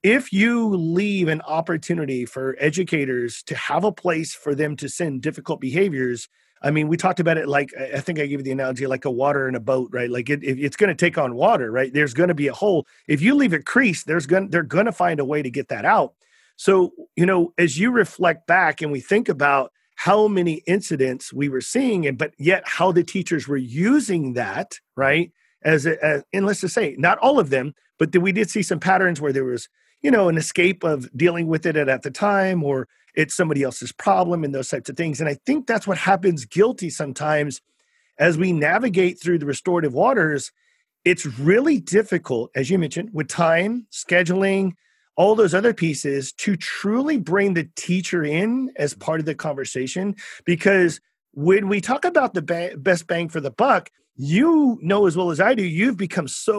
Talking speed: 215 wpm